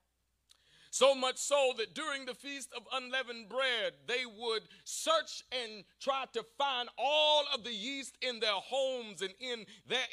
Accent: American